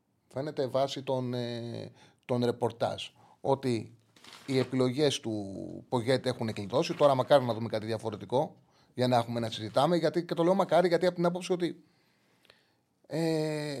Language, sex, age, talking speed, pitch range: Greek, male, 30-49, 150 wpm, 115-165 Hz